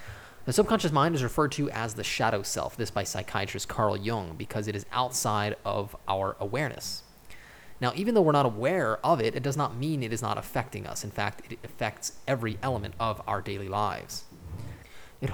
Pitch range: 100-125 Hz